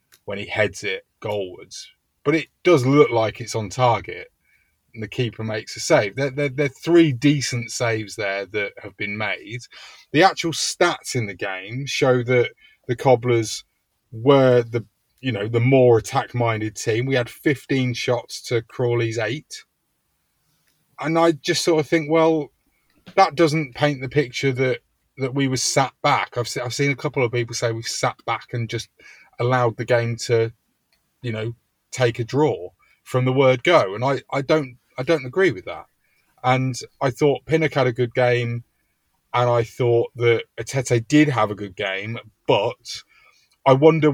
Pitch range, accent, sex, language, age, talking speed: 120-140 Hz, British, male, English, 30-49, 180 wpm